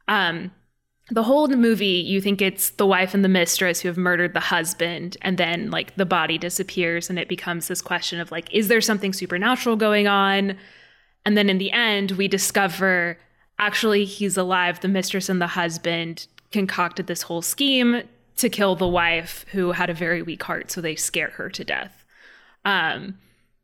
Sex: female